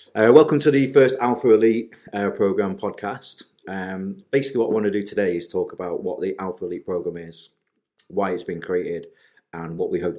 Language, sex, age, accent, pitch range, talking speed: English, male, 30-49, British, 80-100 Hz, 205 wpm